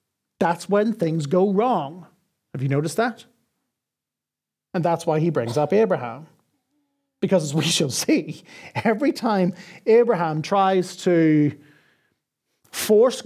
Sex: male